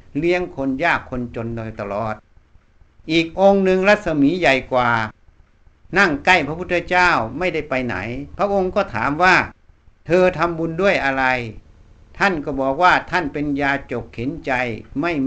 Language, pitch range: Thai, 115-175 Hz